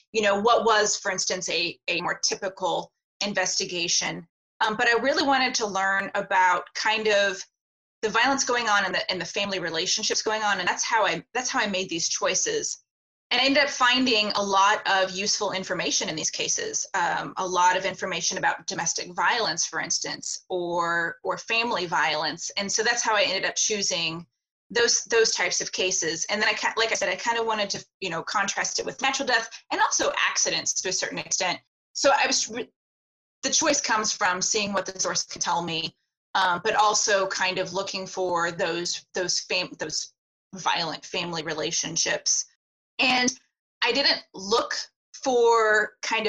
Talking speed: 185 wpm